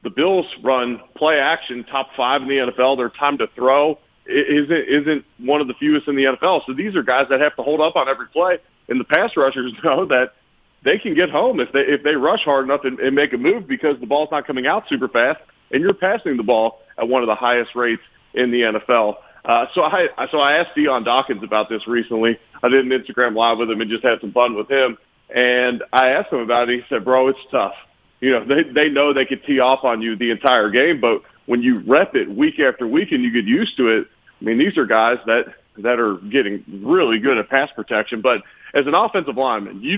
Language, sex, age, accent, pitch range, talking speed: English, male, 40-59, American, 120-145 Hz, 240 wpm